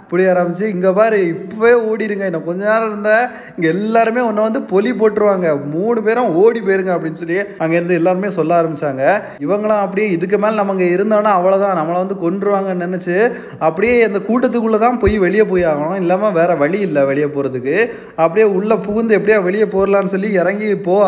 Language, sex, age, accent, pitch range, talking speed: Tamil, male, 20-39, native, 165-210 Hz, 170 wpm